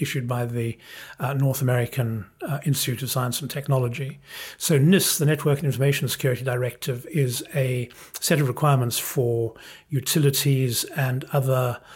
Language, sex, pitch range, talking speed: English, male, 130-145 Hz, 145 wpm